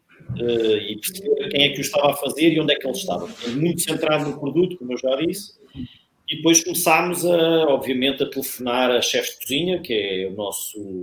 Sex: male